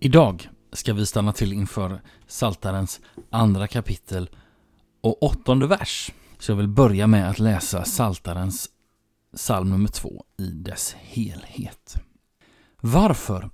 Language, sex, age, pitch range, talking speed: Swedish, male, 30-49, 100-125 Hz, 120 wpm